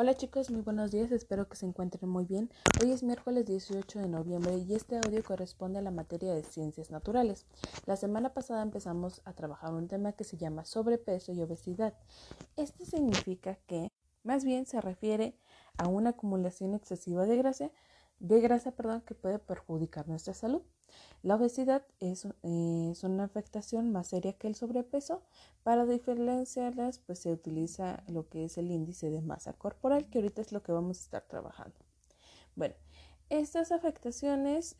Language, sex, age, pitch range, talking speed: Spanish, female, 30-49, 170-225 Hz, 170 wpm